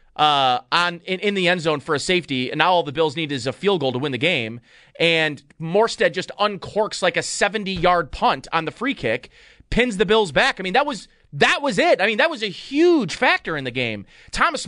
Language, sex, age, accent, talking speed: English, male, 30-49, American, 235 wpm